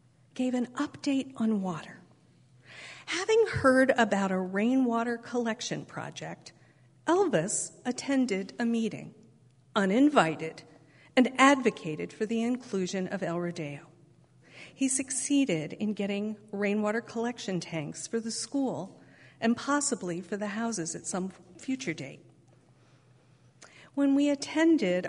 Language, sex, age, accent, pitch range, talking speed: English, female, 50-69, American, 170-245 Hz, 110 wpm